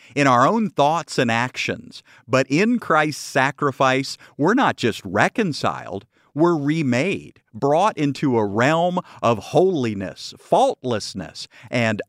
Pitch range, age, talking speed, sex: 115-150 Hz, 50-69, 120 wpm, male